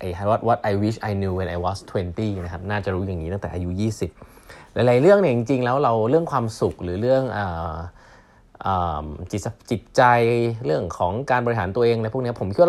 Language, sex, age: Thai, male, 20-39